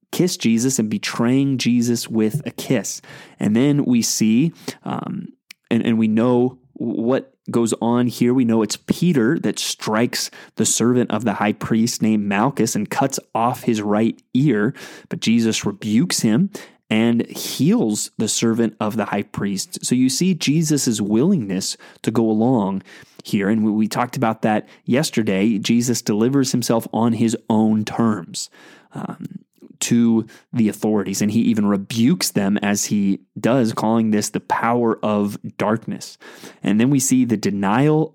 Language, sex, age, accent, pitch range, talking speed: English, male, 20-39, American, 110-135 Hz, 155 wpm